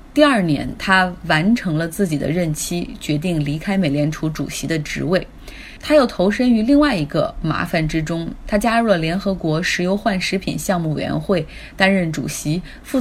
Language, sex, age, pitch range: Chinese, female, 20-39, 175-230 Hz